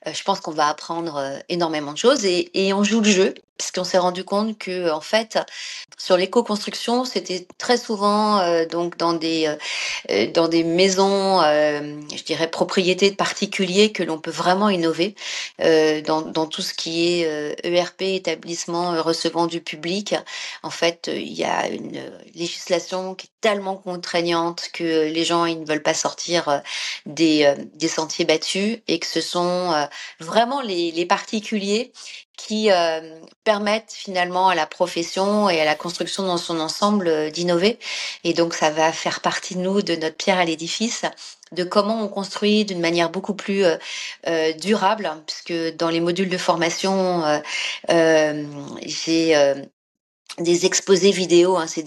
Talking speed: 175 wpm